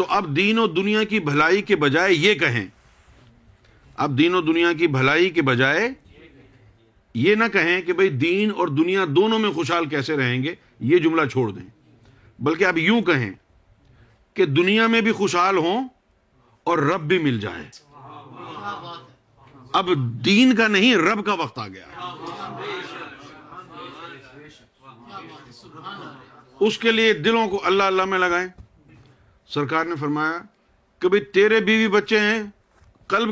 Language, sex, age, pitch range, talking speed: Urdu, male, 50-69, 150-210 Hz, 140 wpm